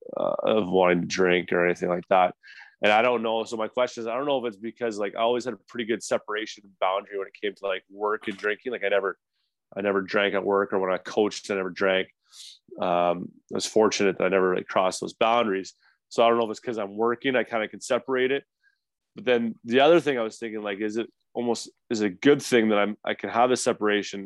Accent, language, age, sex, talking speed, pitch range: American, English, 20-39, male, 260 wpm, 100-115 Hz